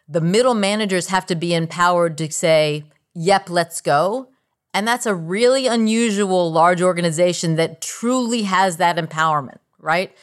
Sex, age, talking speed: female, 40-59, 145 wpm